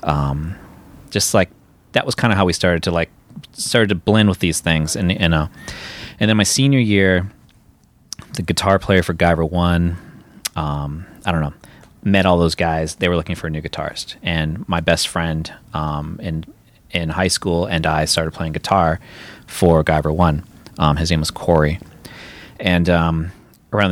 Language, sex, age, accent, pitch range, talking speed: English, male, 30-49, American, 80-100 Hz, 180 wpm